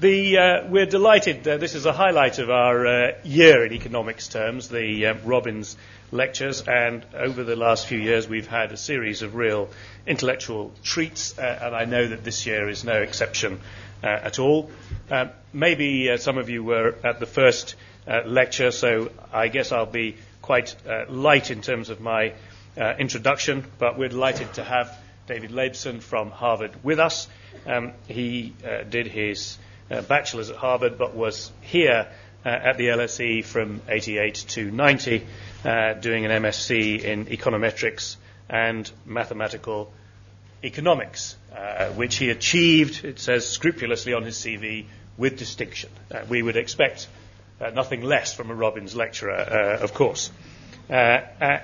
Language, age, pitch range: English, 40-59, 105-130 Hz